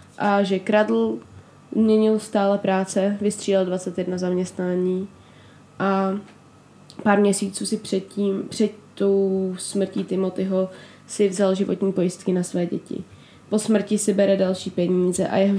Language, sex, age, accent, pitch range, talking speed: Czech, female, 20-39, native, 175-205 Hz, 130 wpm